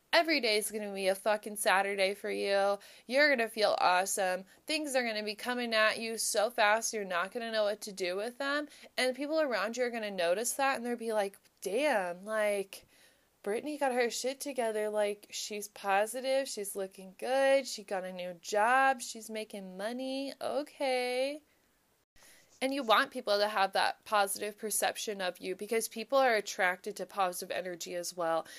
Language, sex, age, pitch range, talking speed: English, female, 20-39, 190-245 Hz, 190 wpm